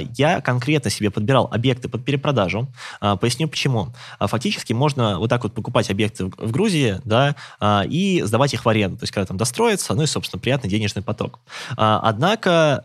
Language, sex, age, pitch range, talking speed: Russian, male, 20-39, 105-140 Hz, 170 wpm